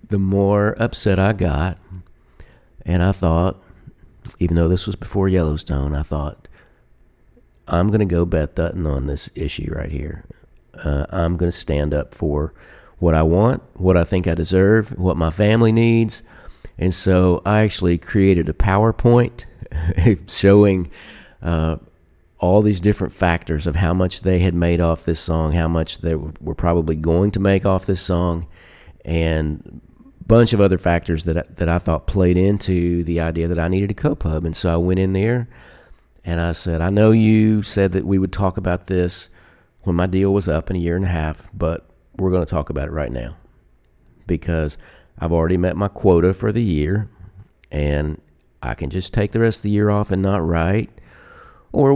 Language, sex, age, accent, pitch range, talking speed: English, male, 50-69, American, 80-100 Hz, 185 wpm